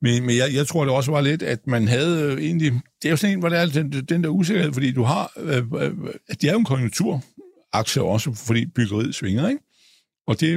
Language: Danish